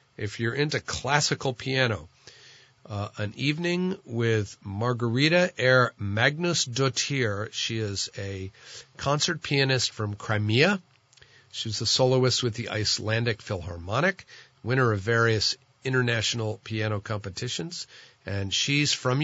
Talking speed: 110 wpm